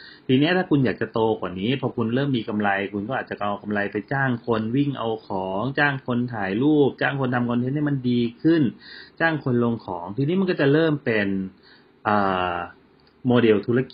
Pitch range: 105-130 Hz